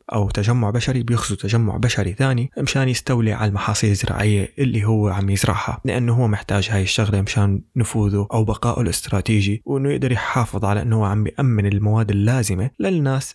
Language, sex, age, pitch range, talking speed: Arabic, male, 20-39, 105-130 Hz, 165 wpm